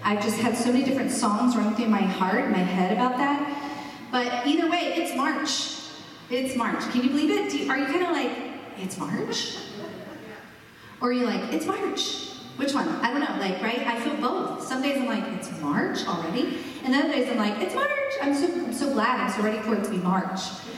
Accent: American